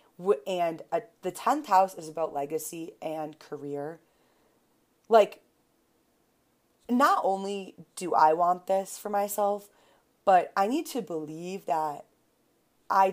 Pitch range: 155-205 Hz